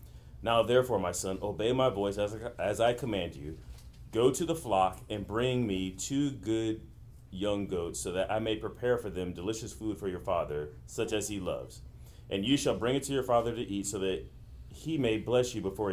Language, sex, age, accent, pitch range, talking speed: English, male, 30-49, American, 95-120 Hz, 215 wpm